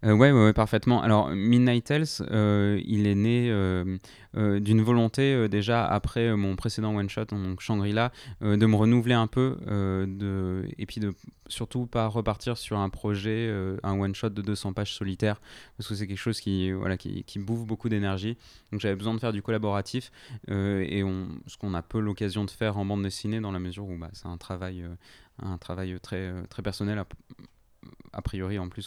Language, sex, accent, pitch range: French, male, French, 100-115 Hz